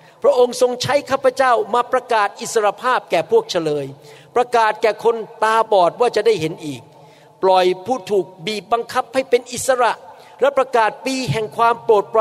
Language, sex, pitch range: Thai, male, 155-215 Hz